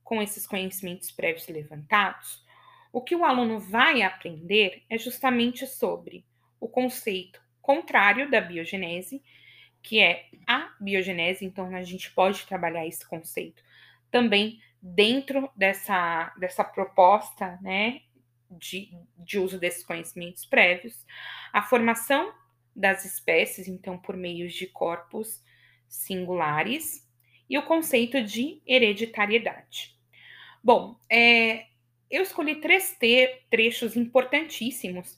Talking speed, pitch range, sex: 110 wpm, 180-245 Hz, female